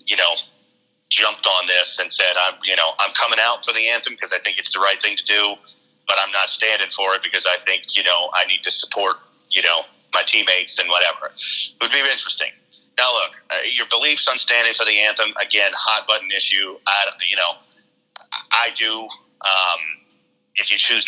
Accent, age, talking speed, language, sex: American, 40-59, 210 wpm, English, male